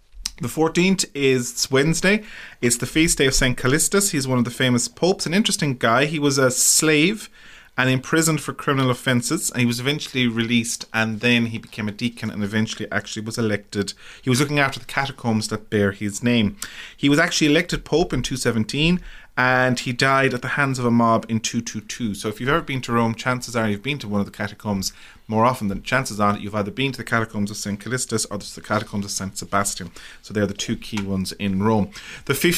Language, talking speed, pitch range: English, 215 wpm, 110-140 Hz